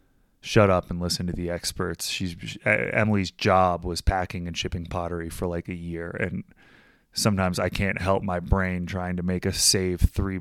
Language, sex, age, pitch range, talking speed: English, male, 20-39, 90-105 Hz, 180 wpm